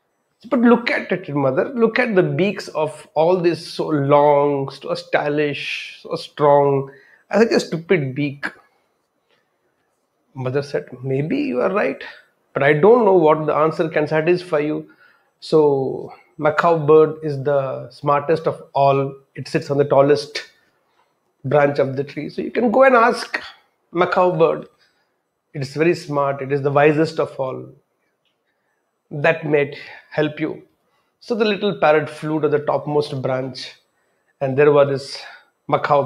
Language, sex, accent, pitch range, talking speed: English, male, Indian, 140-170 Hz, 150 wpm